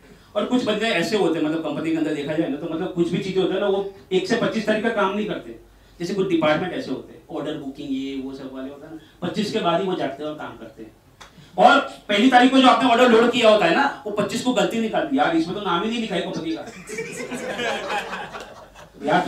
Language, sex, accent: Gujarati, male, native